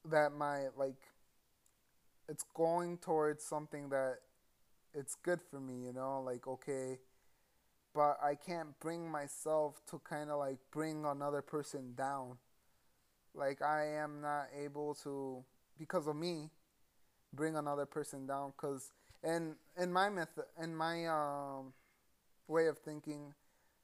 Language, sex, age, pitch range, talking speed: English, male, 20-39, 135-160 Hz, 135 wpm